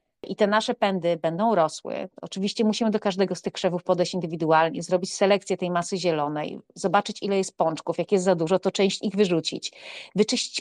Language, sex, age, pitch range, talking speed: Polish, female, 30-49, 180-210 Hz, 185 wpm